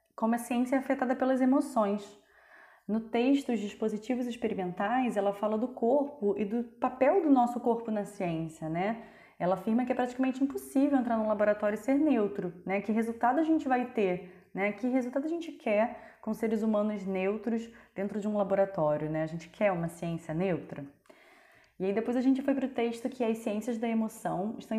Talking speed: 195 wpm